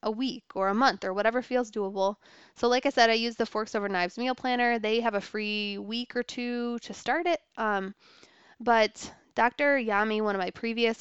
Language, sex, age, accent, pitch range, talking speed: English, female, 20-39, American, 195-240 Hz, 215 wpm